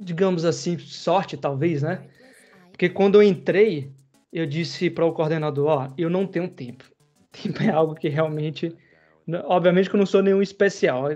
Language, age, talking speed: Portuguese, 20-39, 165 wpm